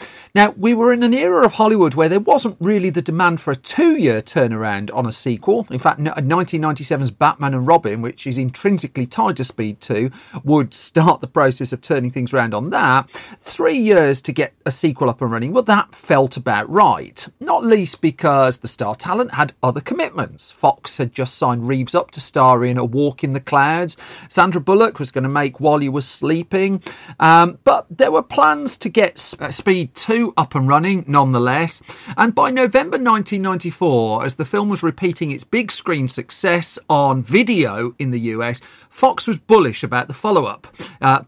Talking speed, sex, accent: 190 wpm, male, British